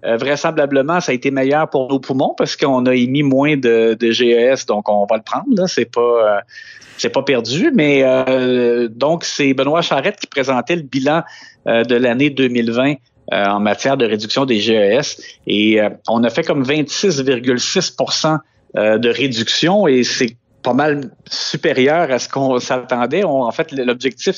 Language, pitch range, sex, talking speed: French, 115-145 Hz, male, 175 wpm